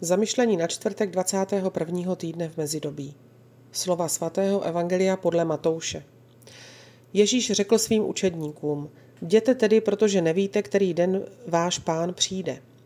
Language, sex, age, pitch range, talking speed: Slovak, female, 40-59, 155-190 Hz, 115 wpm